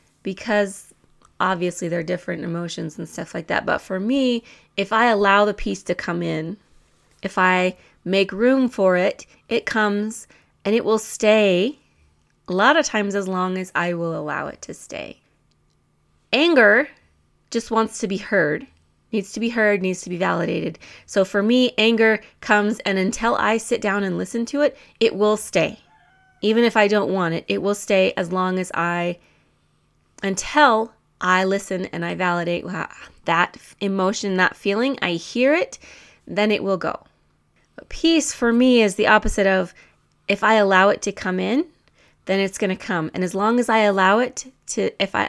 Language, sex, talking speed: English, female, 180 wpm